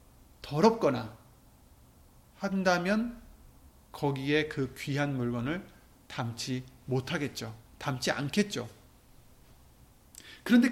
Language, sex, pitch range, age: Korean, male, 120-195 Hz, 30-49